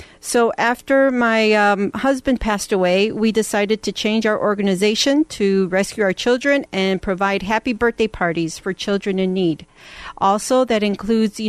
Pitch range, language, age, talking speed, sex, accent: 185-220 Hz, English, 40-59, 155 wpm, female, American